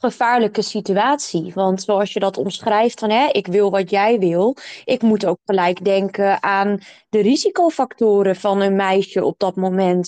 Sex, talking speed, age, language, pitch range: female, 165 wpm, 20-39, Dutch, 190-220 Hz